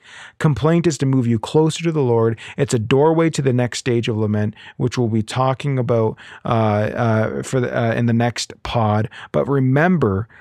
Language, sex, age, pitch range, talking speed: English, male, 40-59, 110-140 Hz, 195 wpm